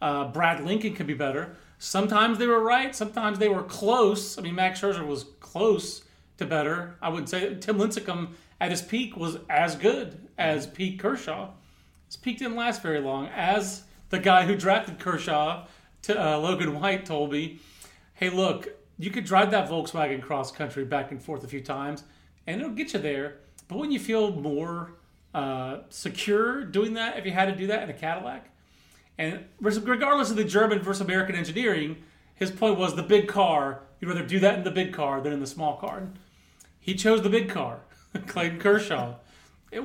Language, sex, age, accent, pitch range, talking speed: English, male, 40-59, American, 150-210 Hz, 190 wpm